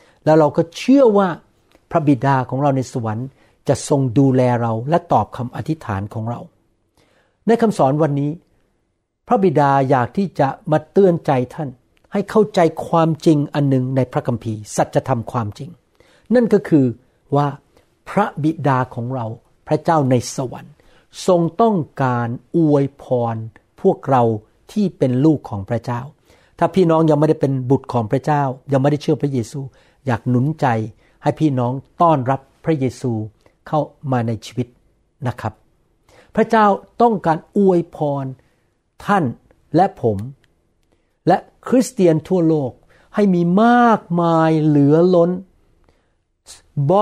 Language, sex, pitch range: Thai, male, 125-170 Hz